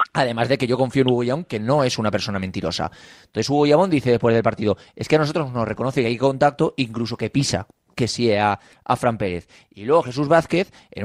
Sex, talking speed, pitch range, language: male, 240 wpm, 115-145 Hz, Spanish